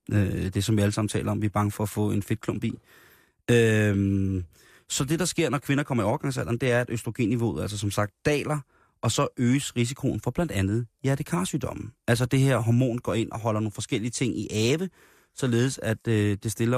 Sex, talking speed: male, 220 wpm